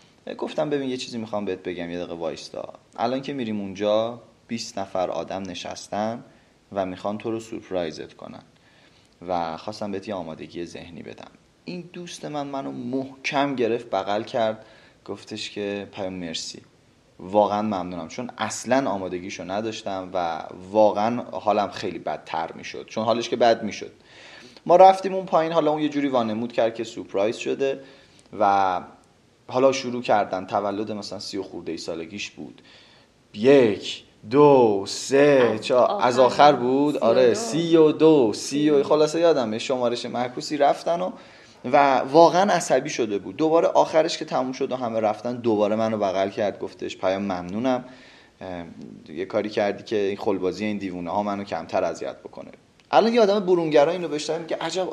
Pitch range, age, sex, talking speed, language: 100-145 Hz, 30-49, male, 155 wpm, Persian